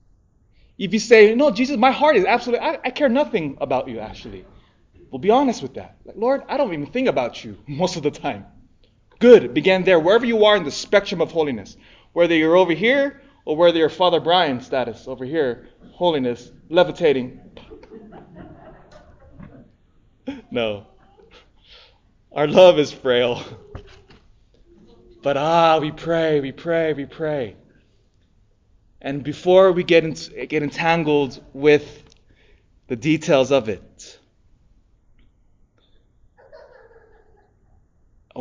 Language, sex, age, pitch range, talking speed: English, male, 20-39, 115-170 Hz, 130 wpm